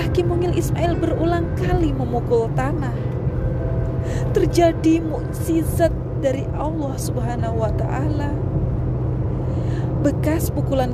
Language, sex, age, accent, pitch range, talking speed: Indonesian, female, 30-49, native, 125-135 Hz, 90 wpm